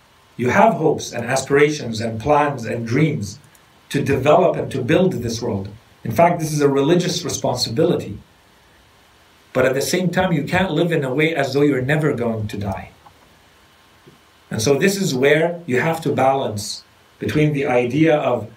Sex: male